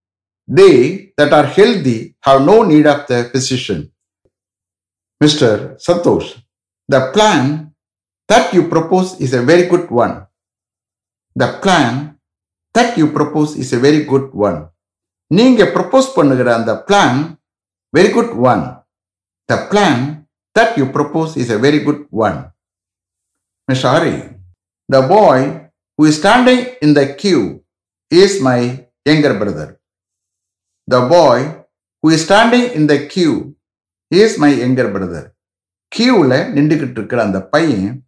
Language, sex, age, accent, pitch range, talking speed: English, male, 60-79, Indian, 100-155 Hz, 125 wpm